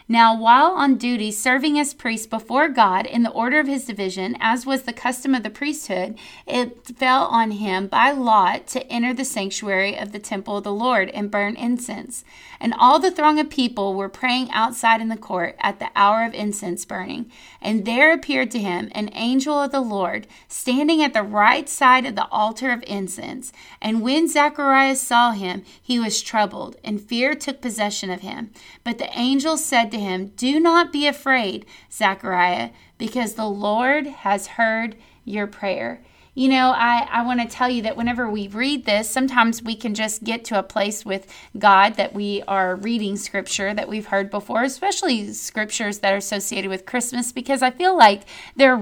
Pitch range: 205-260 Hz